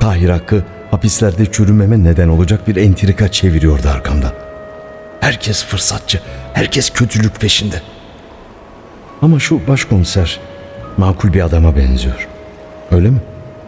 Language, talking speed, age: Turkish, 100 wpm, 60-79